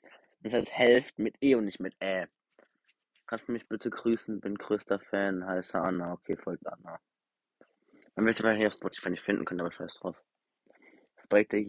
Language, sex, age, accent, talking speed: German, male, 20-39, German, 185 wpm